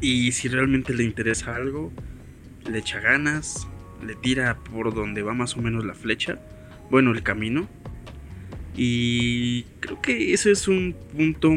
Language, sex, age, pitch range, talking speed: Spanish, male, 20-39, 110-135 Hz, 150 wpm